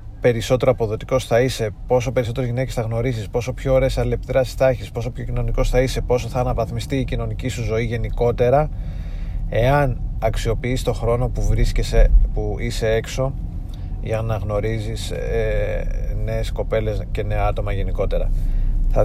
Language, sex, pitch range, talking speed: Greek, male, 95-125 Hz, 150 wpm